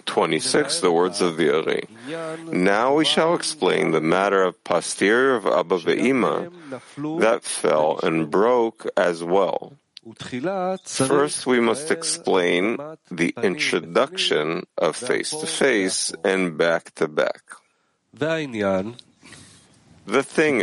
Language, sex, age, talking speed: English, male, 50-69, 110 wpm